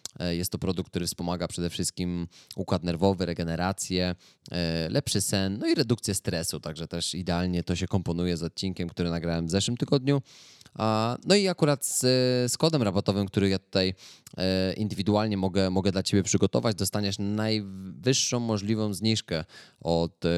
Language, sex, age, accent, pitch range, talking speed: Polish, male, 20-39, native, 85-105 Hz, 145 wpm